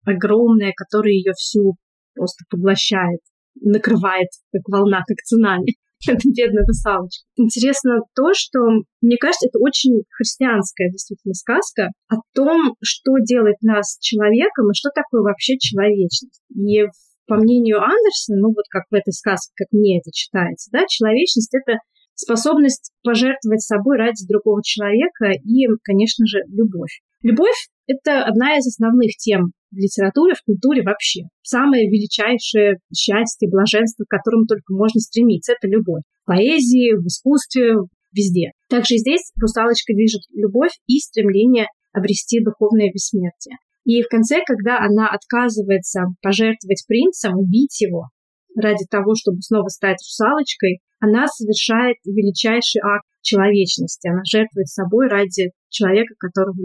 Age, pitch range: 30-49, 200-240 Hz